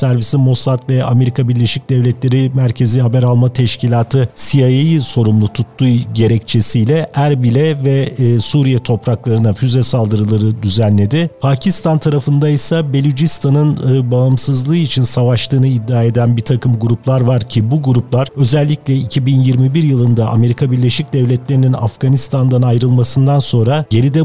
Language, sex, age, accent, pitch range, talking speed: Turkish, male, 50-69, native, 120-140 Hz, 115 wpm